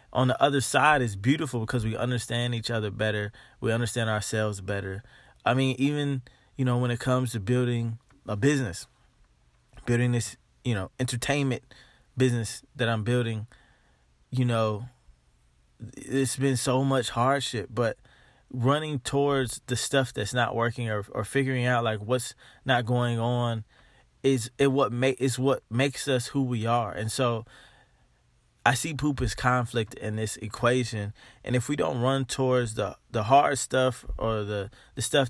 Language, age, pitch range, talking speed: English, 20-39, 115-135 Hz, 160 wpm